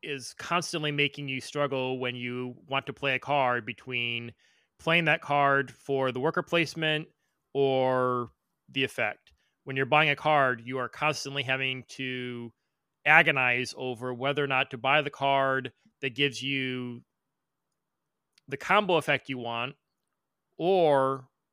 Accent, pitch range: American, 130-150 Hz